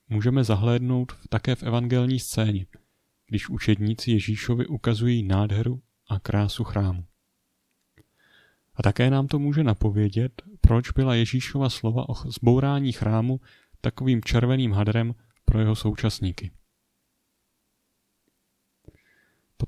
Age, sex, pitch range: 30-49, male, 105-125 Hz